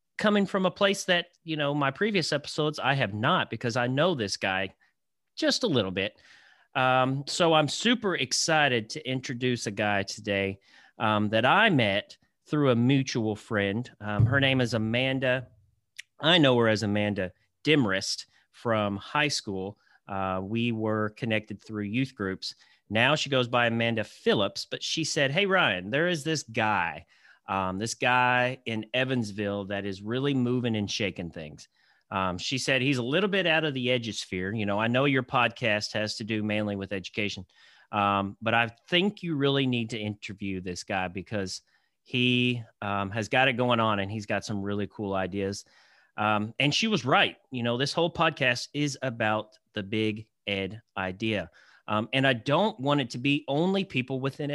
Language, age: English, 30-49